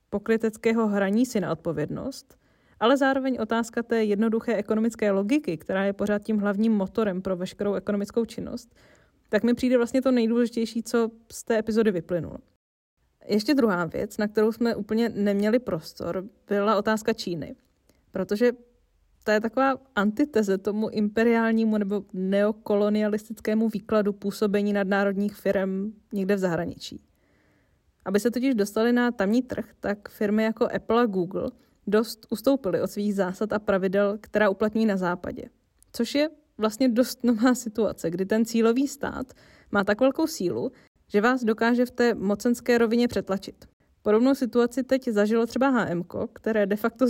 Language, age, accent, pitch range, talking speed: Czech, 20-39, native, 205-235 Hz, 150 wpm